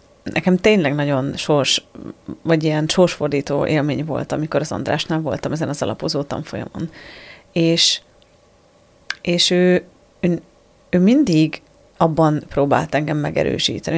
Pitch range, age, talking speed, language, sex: 150-185 Hz, 30-49, 115 wpm, Hungarian, female